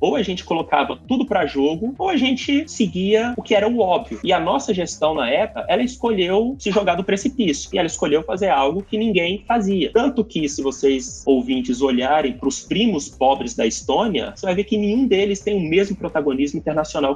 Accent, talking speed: Brazilian, 205 wpm